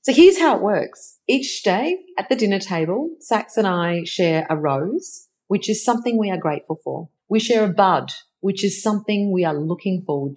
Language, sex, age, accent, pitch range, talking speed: English, female, 40-59, Australian, 155-220 Hz, 205 wpm